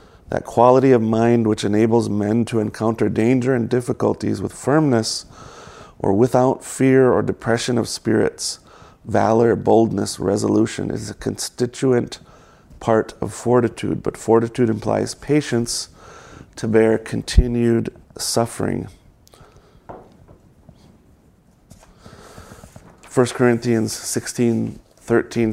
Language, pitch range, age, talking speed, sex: English, 110-120 Hz, 30-49, 100 wpm, male